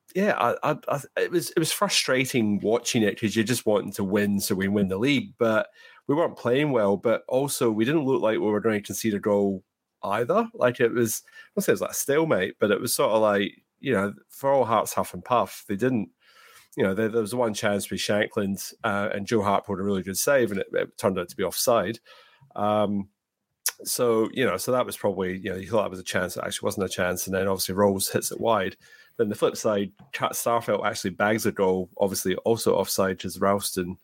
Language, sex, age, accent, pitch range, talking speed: English, male, 30-49, British, 95-115 Hz, 240 wpm